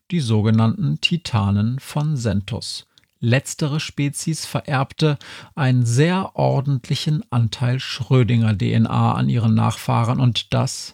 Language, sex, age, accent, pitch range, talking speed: German, male, 40-59, German, 115-145 Hz, 100 wpm